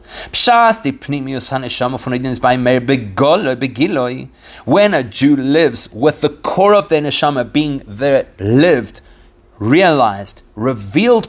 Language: English